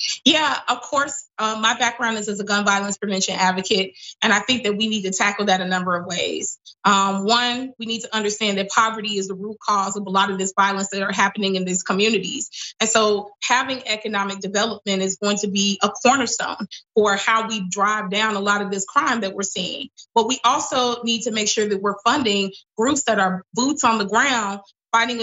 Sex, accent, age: female, American, 20-39